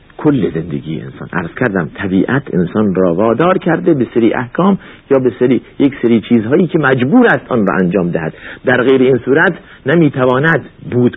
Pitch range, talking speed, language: 90-135 Hz, 170 wpm, Persian